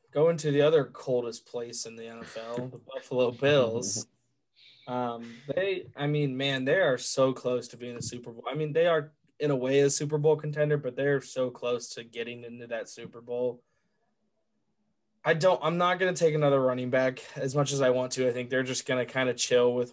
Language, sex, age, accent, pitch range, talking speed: English, male, 20-39, American, 120-145 Hz, 220 wpm